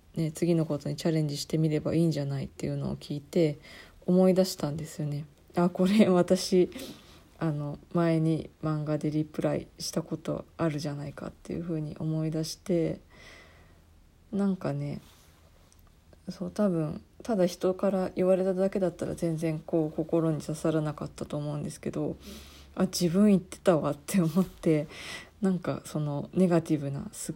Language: Japanese